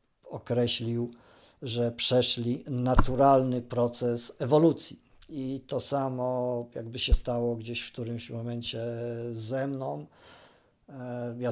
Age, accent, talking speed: 50-69, native, 105 wpm